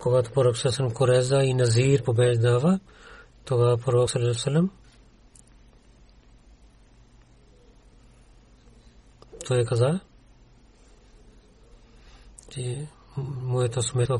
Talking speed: 60 wpm